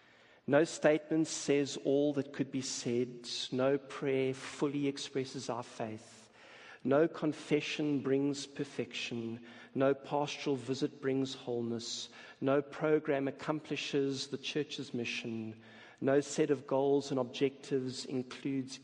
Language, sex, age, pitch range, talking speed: English, male, 50-69, 125-145 Hz, 115 wpm